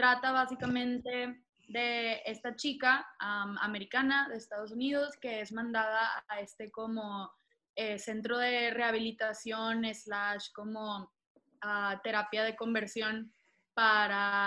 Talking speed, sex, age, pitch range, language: 110 wpm, female, 20-39, 205-245 Hz, Spanish